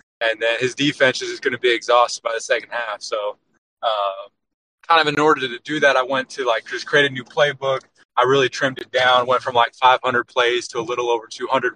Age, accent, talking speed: 30-49, American, 235 wpm